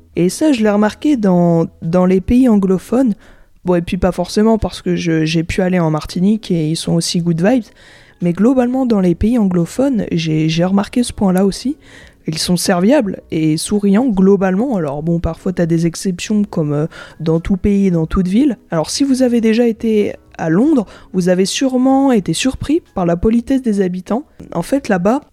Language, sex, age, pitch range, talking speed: French, female, 20-39, 175-230 Hz, 190 wpm